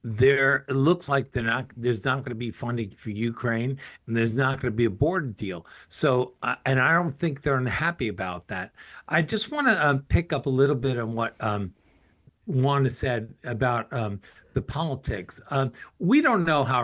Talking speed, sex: 205 wpm, male